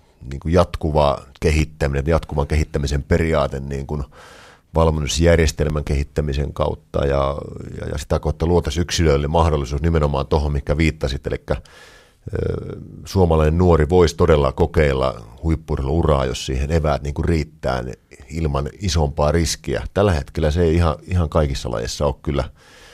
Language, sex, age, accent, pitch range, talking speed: Finnish, male, 40-59, native, 70-80 Hz, 130 wpm